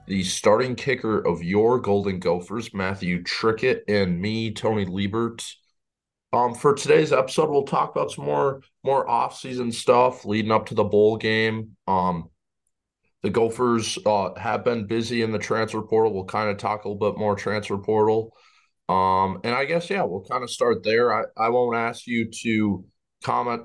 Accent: American